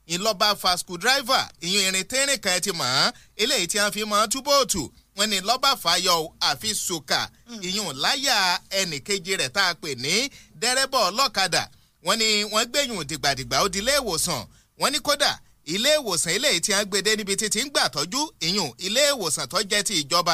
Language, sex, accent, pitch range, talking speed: English, male, Nigerian, 175-240 Hz, 195 wpm